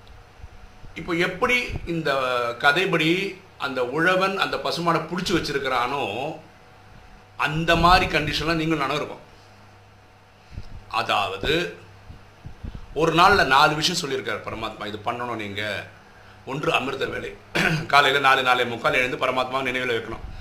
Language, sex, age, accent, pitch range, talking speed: Tamil, male, 50-69, native, 105-150 Hz, 105 wpm